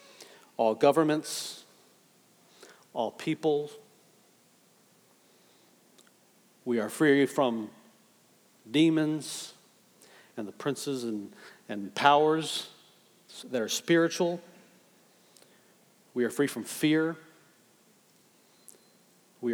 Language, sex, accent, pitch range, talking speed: English, male, American, 130-165 Hz, 75 wpm